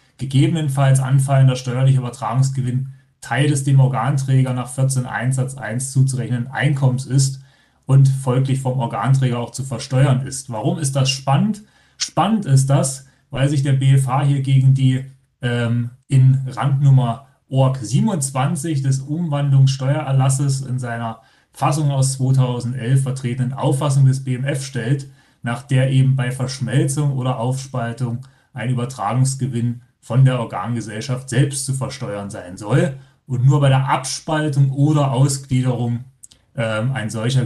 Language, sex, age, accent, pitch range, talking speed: German, male, 30-49, German, 130-140 Hz, 130 wpm